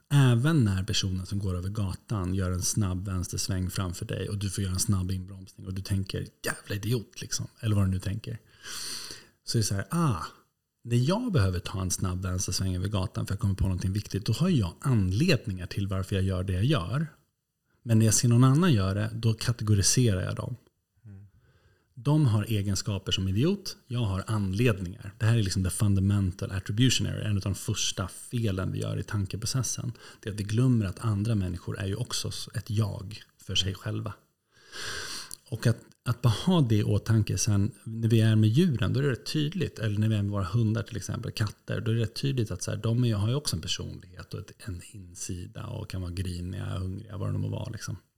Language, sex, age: Swedish, male, 30-49